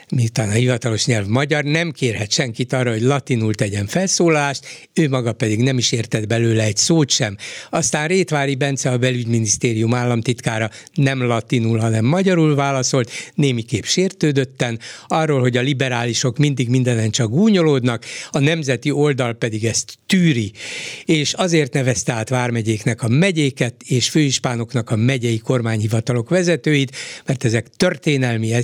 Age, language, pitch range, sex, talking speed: 60-79, Hungarian, 120-155 Hz, male, 140 wpm